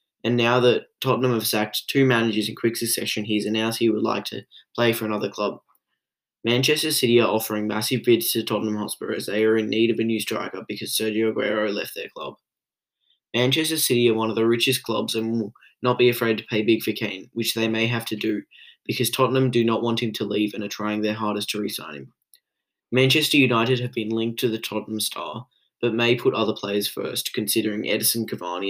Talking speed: 215 wpm